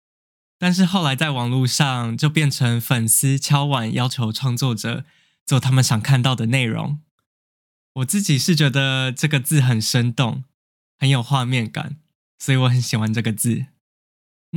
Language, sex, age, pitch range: Chinese, male, 10-29, 120-145 Hz